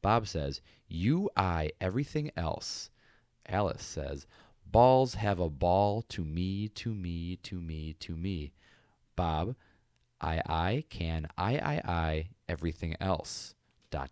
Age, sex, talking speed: 30-49, male, 130 wpm